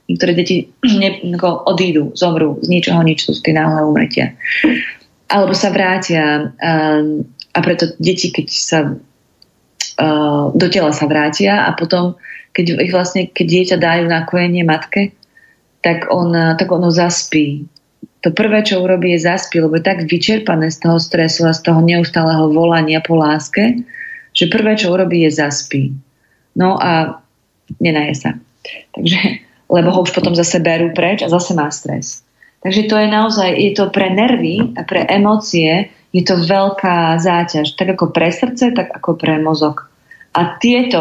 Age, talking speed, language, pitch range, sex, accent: 30-49, 155 wpm, Czech, 160-190 Hz, female, native